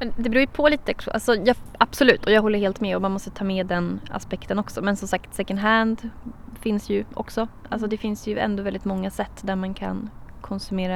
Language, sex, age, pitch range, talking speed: Swedish, female, 20-39, 195-230 Hz, 225 wpm